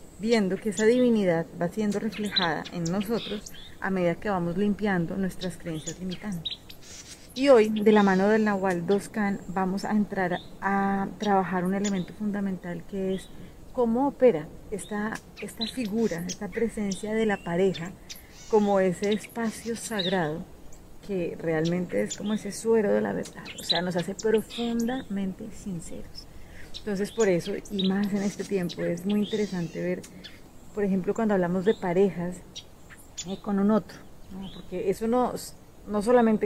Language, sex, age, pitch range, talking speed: Spanish, female, 30-49, 185-215 Hz, 150 wpm